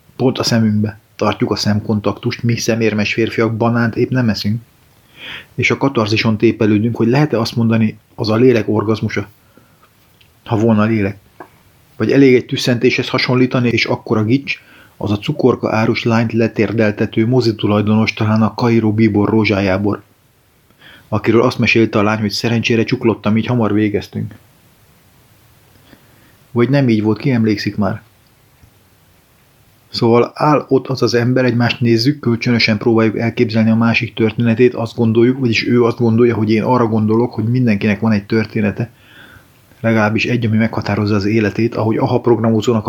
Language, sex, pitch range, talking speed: Hungarian, male, 110-120 Hz, 150 wpm